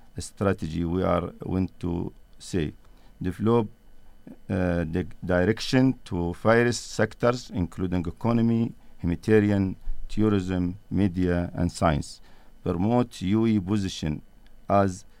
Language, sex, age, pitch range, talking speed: English, male, 50-69, 90-110 Hz, 95 wpm